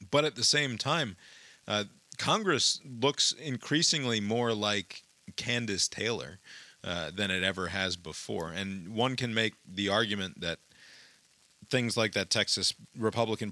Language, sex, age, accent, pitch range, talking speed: English, male, 30-49, American, 95-115 Hz, 140 wpm